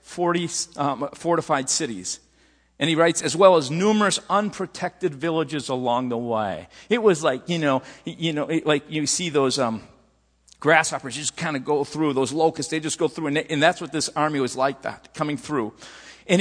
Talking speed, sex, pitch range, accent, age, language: 200 wpm, male, 140-185 Hz, American, 50-69, English